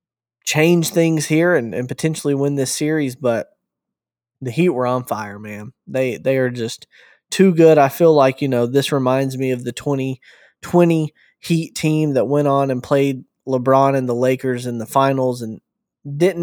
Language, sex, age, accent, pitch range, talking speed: English, male, 20-39, American, 125-160 Hz, 180 wpm